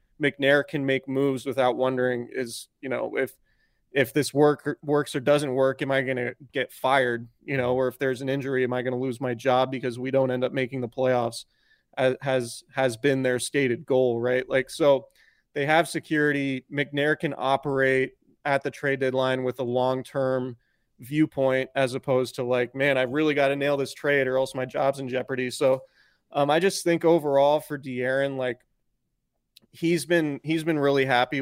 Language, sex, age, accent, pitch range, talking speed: English, male, 30-49, American, 130-145 Hz, 190 wpm